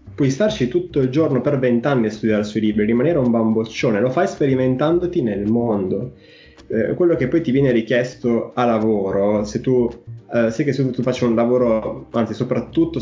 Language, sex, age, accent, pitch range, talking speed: Italian, male, 20-39, native, 110-125 Hz, 190 wpm